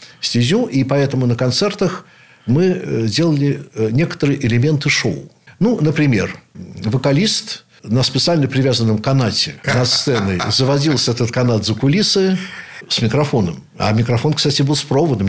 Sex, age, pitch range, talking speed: male, 60-79, 115-145 Hz, 125 wpm